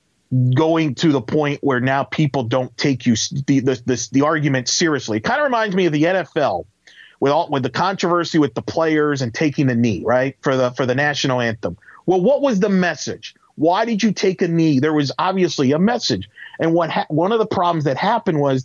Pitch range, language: 140-180 Hz, English